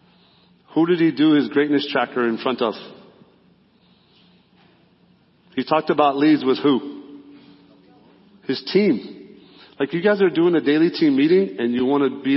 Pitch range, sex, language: 130-160 Hz, male, English